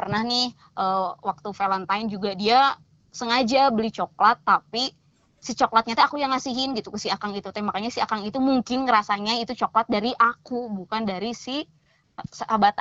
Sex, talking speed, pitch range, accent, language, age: female, 165 wpm, 195-230 Hz, native, Indonesian, 20-39